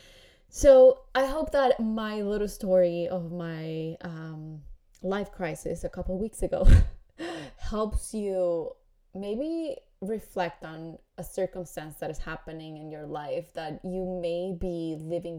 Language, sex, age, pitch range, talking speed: English, female, 20-39, 170-210 Hz, 135 wpm